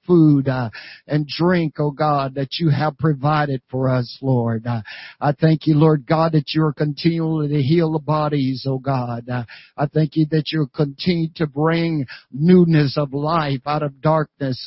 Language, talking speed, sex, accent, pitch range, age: English, 180 wpm, male, American, 140-160 Hz, 60-79